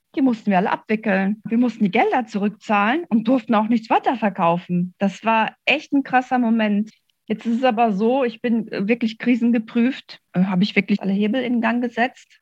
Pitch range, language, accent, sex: 190-230 Hz, German, German, female